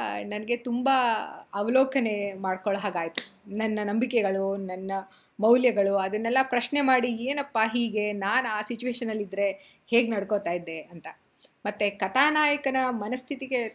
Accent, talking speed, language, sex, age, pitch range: native, 110 wpm, Kannada, female, 20-39, 210-260 Hz